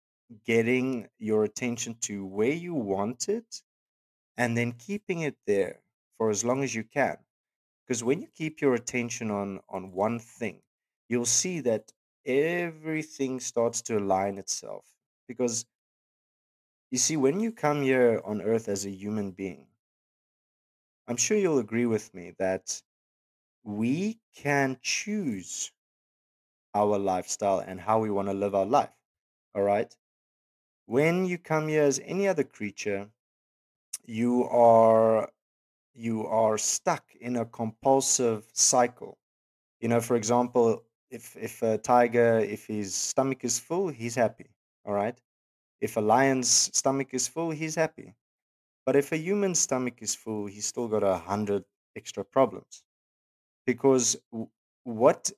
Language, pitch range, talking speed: English, 105-135 Hz, 140 wpm